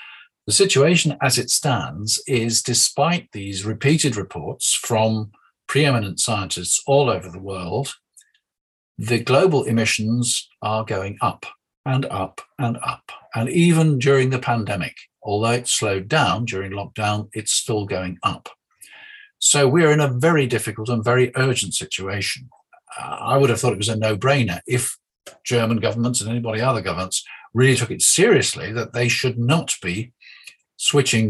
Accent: British